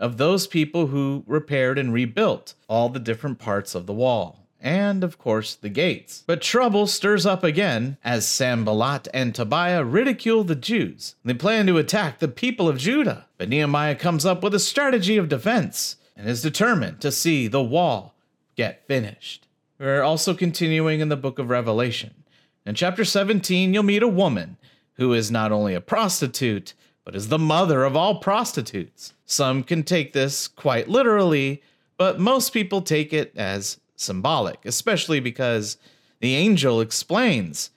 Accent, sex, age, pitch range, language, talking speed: American, male, 40-59, 125-185 Hz, English, 165 wpm